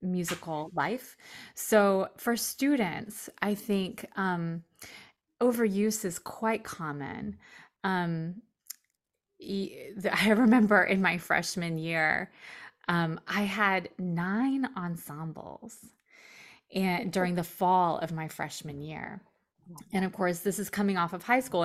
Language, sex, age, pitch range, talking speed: English, female, 20-39, 175-225 Hz, 115 wpm